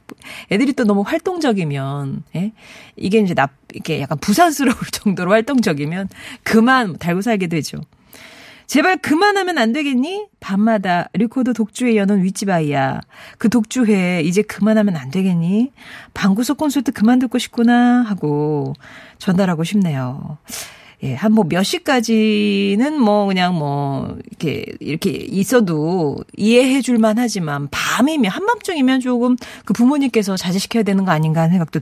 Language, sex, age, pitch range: Korean, female, 40-59, 170-245 Hz